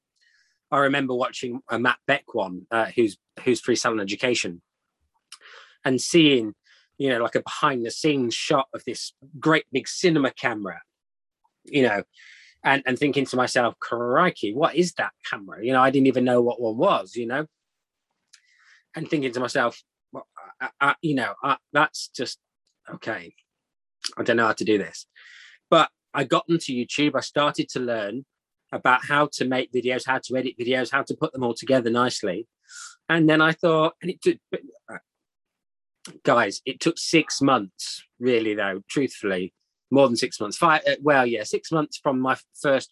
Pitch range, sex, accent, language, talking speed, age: 120-150 Hz, male, British, English, 170 wpm, 20-39